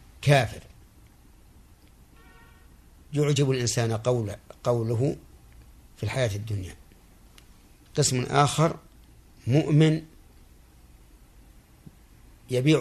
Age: 50-69